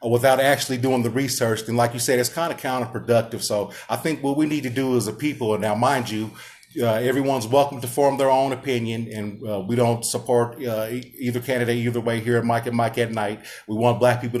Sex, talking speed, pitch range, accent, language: male, 240 wpm, 115-140 Hz, American, English